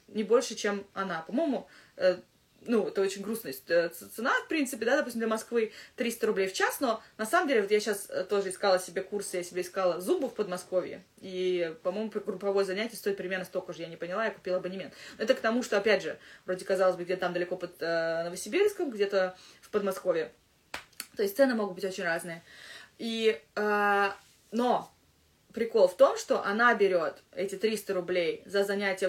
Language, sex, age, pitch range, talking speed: Russian, female, 20-39, 185-225 Hz, 195 wpm